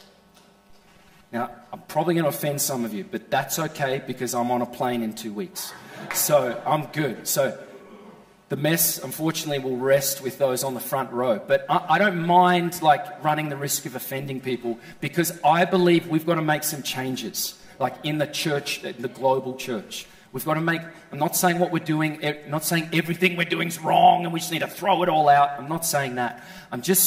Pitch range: 140-185 Hz